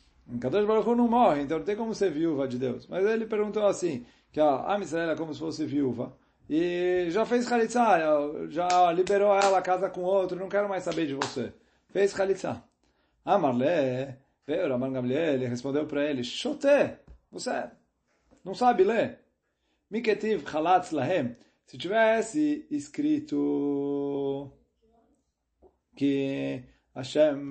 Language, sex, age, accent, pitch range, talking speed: Portuguese, male, 30-49, Brazilian, 135-195 Hz, 135 wpm